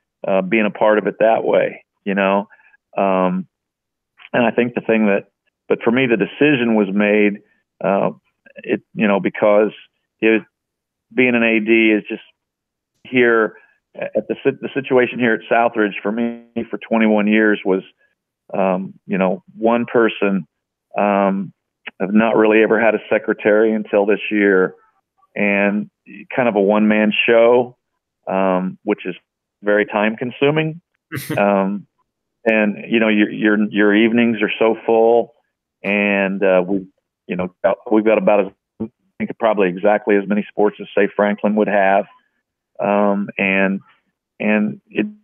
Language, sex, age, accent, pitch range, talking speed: English, male, 40-59, American, 100-115 Hz, 150 wpm